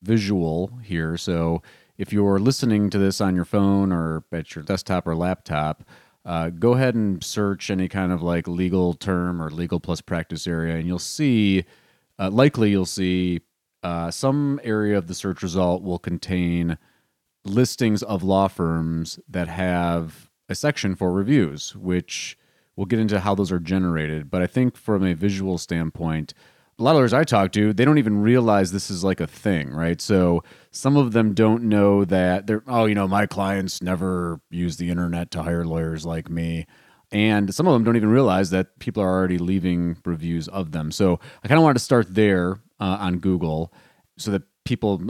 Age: 30-49